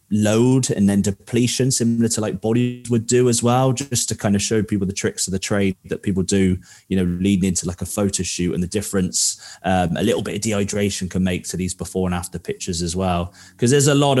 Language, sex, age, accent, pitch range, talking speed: English, male, 20-39, British, 95-115 Hz, 240 wpm